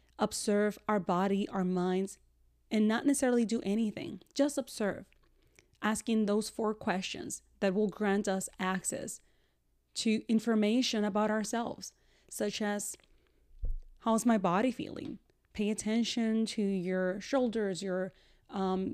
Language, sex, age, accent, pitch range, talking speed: English, female, 30-49, American, 195-235 Hz, 120 wpm